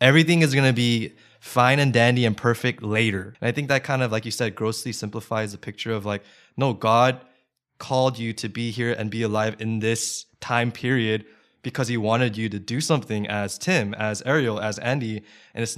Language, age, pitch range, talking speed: English, 20-39, 110-130 Hz, 210 wpm